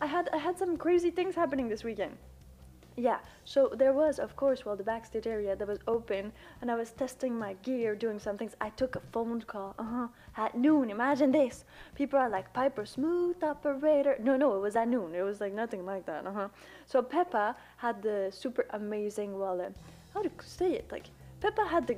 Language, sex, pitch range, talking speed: English, female, 215-285 Hz, 215 wpm